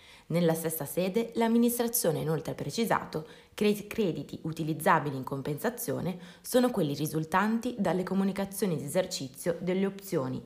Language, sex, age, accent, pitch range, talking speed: Italian, female, 20-39, native, 155-220 Hz, 125 wpm